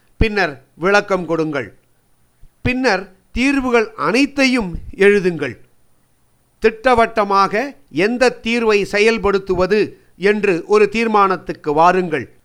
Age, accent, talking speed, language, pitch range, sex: 50-69, native, 70 wpm, Tamil, 180-230 Hz, male